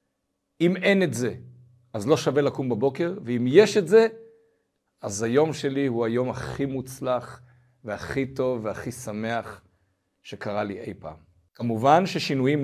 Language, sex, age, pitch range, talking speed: Hebrew, male, 50-69, 120-160 Hz, 140 wpm